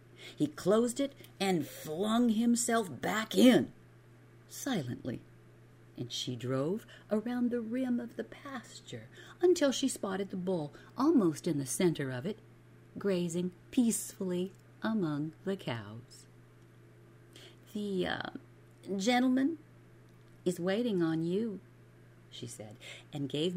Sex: female